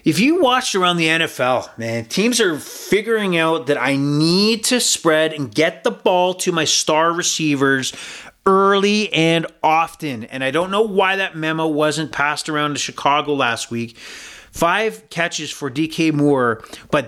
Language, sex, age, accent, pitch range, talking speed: English, male, 30-49, American, 135-170 Hz, 165 wpm